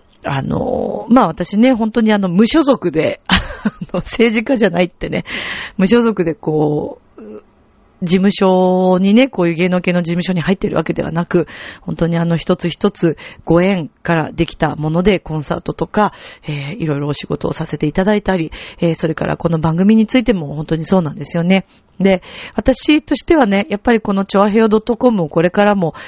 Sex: female